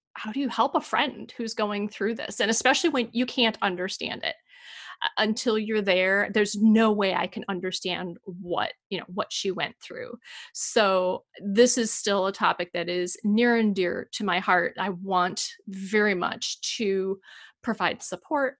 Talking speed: 175 wpm